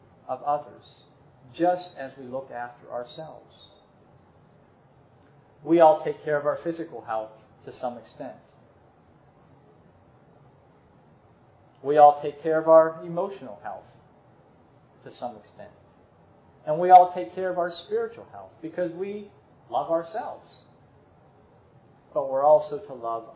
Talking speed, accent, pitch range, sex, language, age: 125 wpm, American, 125-165 Hz, male, English, 40-59